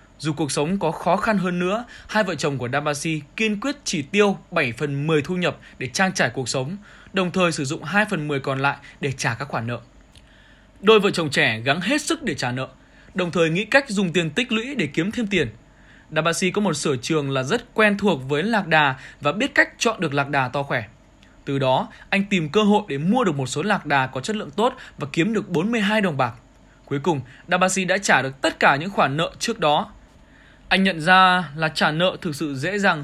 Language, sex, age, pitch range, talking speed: Vietnamese, male, 20-39, 145-200 Hz, 235 wpm